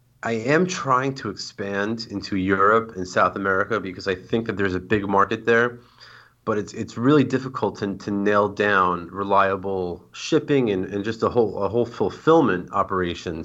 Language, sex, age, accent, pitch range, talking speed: English, male, 30-49, American, 95-115 Hz, 175 wpm